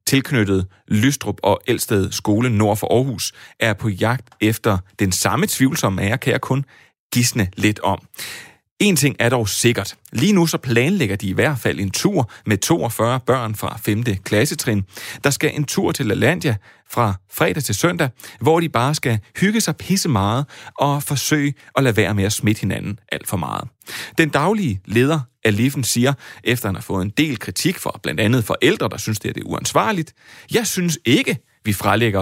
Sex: male